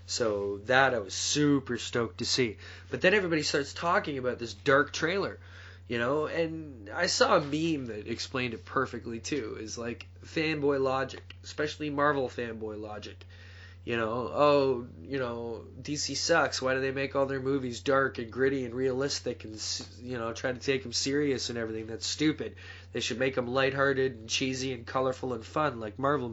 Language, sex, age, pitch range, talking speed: English, male, 20-39, 100-135 Hz, 185 wpm